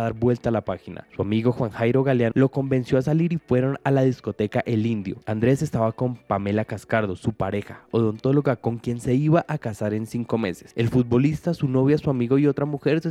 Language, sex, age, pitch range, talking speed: Spanish, male, 20-39, 115-135 Hz, 220 wpm